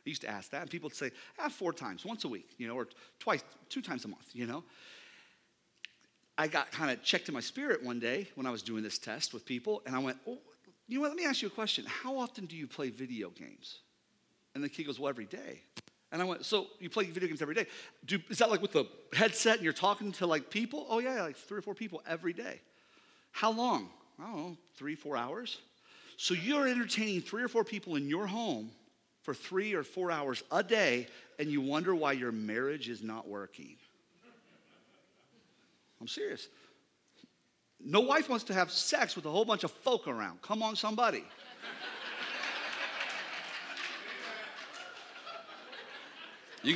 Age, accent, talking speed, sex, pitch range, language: 40-59, American, 200 wpm, male, 150-225 Hz, English